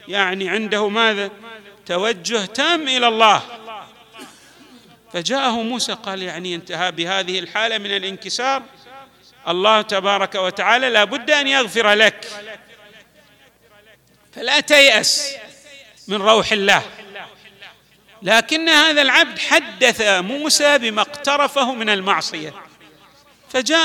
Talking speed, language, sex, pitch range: 100 wpm, Arabic, male, 195-260 Hz